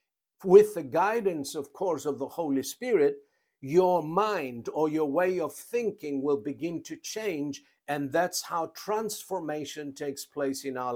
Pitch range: 140-210 Hz